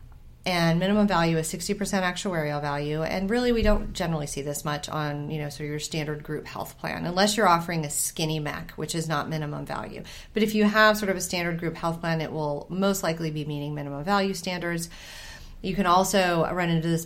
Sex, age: female, 30-49